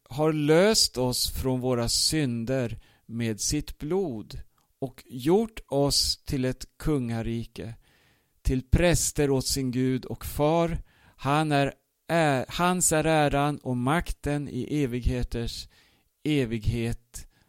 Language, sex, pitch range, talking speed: Swedish, male, 120-150 Hz, 115 wpm